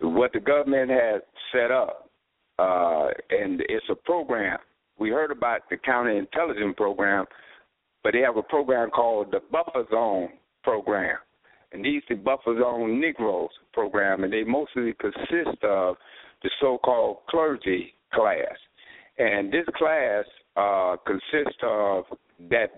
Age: 60-79